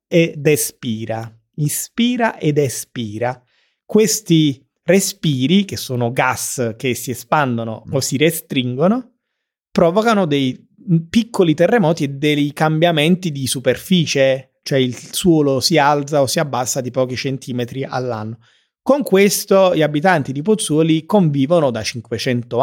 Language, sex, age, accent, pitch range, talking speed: Italian, male, 30-49, native, 135-190 Hz, 120 wpm